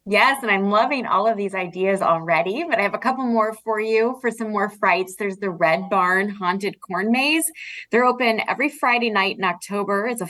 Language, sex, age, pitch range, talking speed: English, female, 20-39, 185-235 Hz, 215 wpm